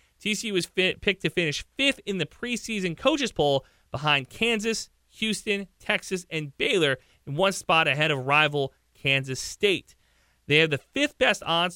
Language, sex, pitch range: English, male, 145-195 Hz